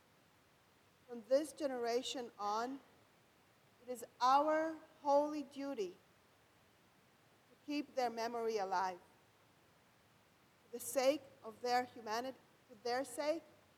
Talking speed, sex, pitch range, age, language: 100 wpm, female, 225-275 Hz, 40-59, English